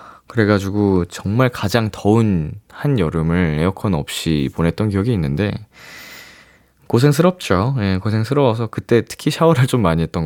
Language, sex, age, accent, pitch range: Korean, male, 20-39, native, 95-145 Hz